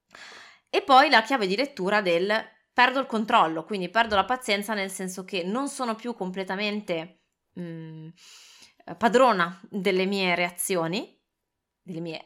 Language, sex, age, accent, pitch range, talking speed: Italian, female, 20-39, native, 170-220 Hz, 135 wpm